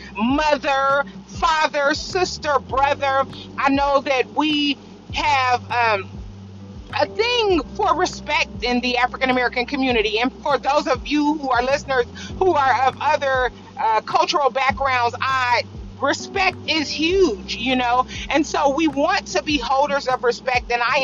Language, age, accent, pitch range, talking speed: English, 40-59, American, 240-295 Hz, 145 wpm